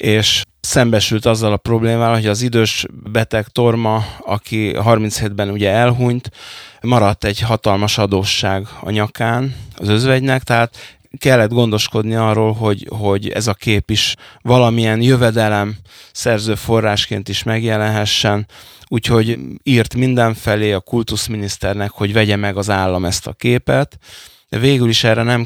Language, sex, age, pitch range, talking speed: Hungarian, male, 20-39, 100-115 Hz, 130 wpm